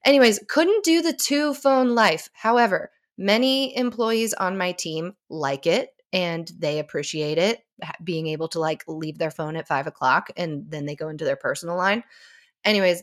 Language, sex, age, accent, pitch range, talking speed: English, female, 20-39, American, 160-215 Hz, 175 wpm